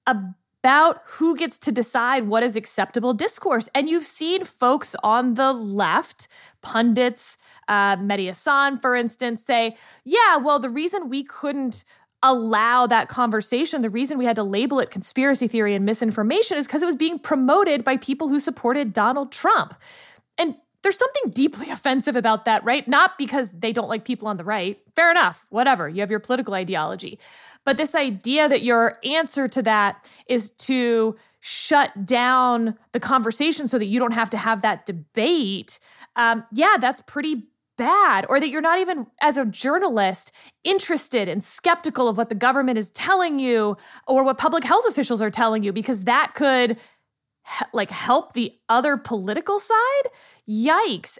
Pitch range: 225-290 Hz